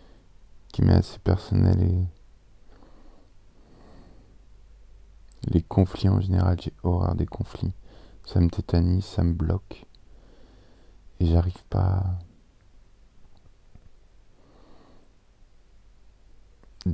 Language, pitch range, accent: French, 90-100 Hz, French